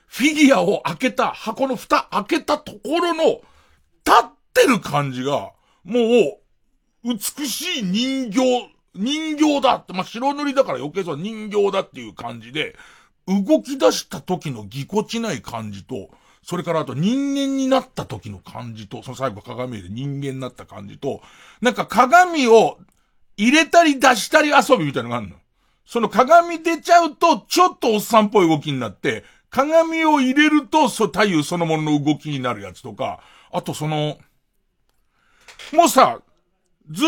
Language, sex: Japanese, male